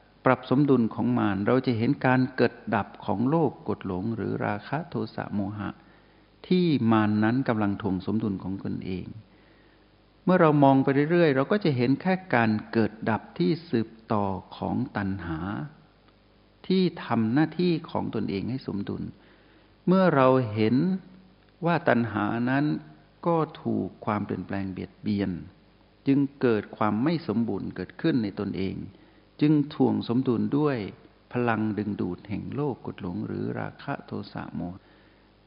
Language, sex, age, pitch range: Thai, male, 60-79, 100-130 Hz